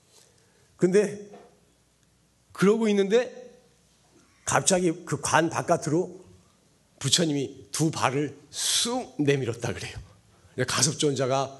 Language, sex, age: Korean, male, 40-59